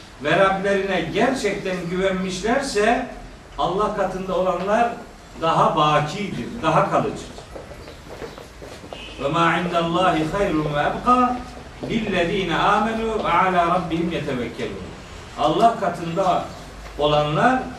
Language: Turkish